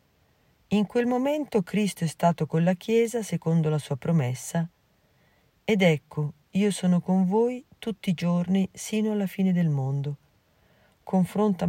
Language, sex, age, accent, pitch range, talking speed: Italian, female, 40-59, native, 150-200 Hz, 145 wpm